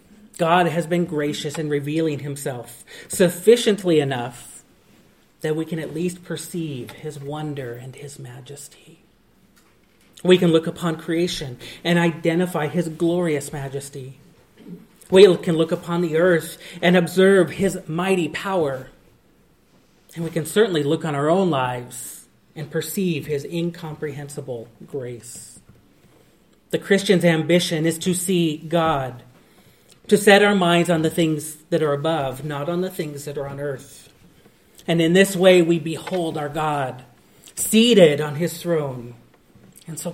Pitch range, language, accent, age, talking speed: 145-175 Hz, English, American, 30-49, 140 wpm